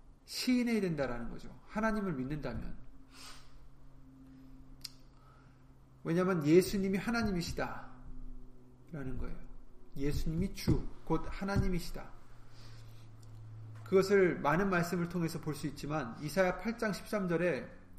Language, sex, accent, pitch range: Korean, male, native, 130-185 Hz